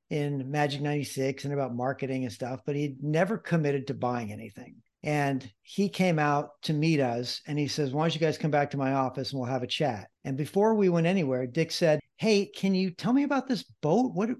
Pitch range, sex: 140-180 Hz, male